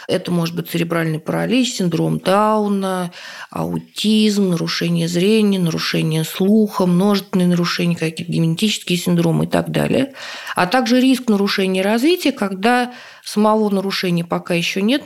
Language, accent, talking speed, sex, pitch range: Russian, native, 125 wpm, female, 175-225 Hz